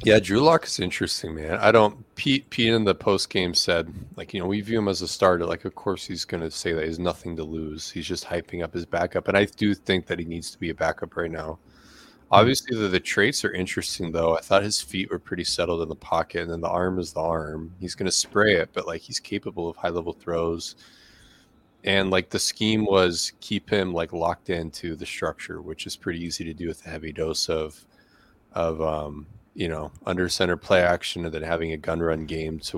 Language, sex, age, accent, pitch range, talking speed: English, male, 20-39, American, 80-100 Hz, 240 wpm